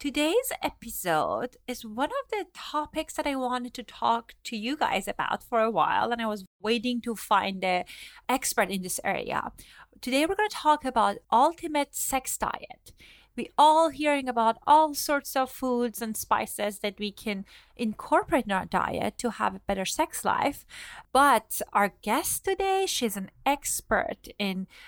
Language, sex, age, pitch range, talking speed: English, female, 30-49, 205-285 Hz, 170 wpm